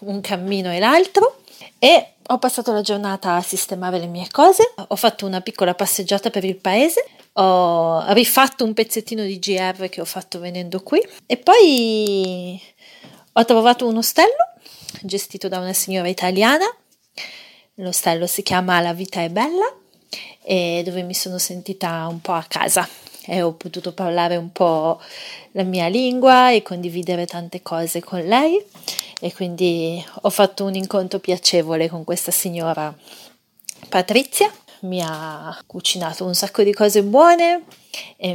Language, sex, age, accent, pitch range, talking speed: Italian, female, 30-49, native, 175-215 Hz, 150 wpm